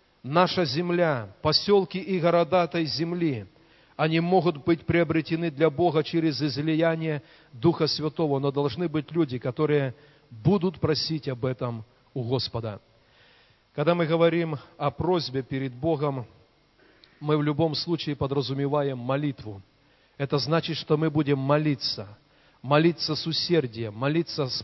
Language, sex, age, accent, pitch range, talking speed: Russian, male, 40-59, native, 130-160 Hz, 125 wpm